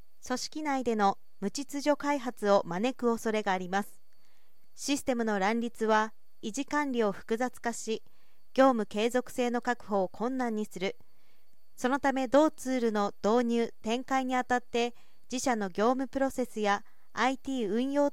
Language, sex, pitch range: Japanese, female, 220-270 Hz